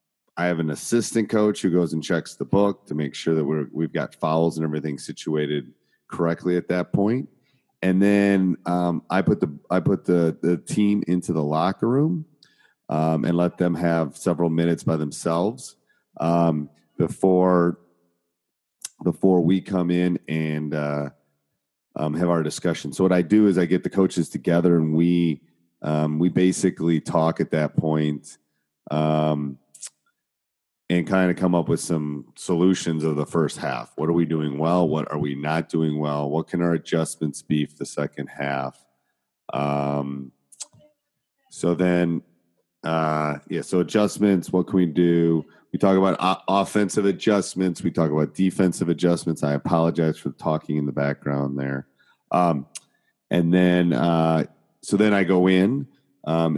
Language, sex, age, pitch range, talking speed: English, male, 30-49, 75-90 Hz, 165 wpm